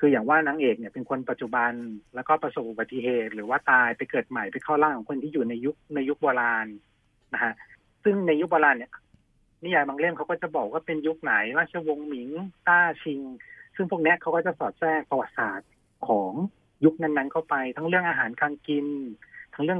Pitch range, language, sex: 125-155 Hz, Thai, male